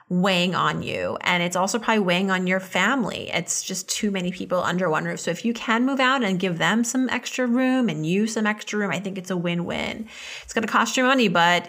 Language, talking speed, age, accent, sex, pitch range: English, 250 wpm, 30-49, American, female, 180-230 Hz